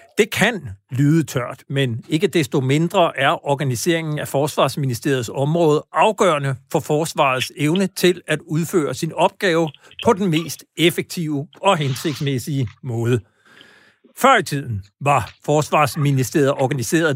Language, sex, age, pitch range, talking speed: Danish, male, 60-79, 135-175 Hz, 120 wpm